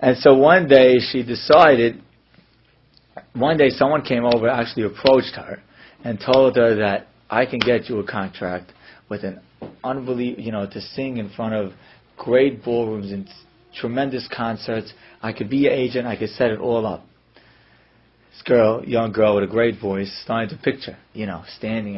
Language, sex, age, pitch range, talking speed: English, male, 30-49, 105-125 Hz, 175 wpm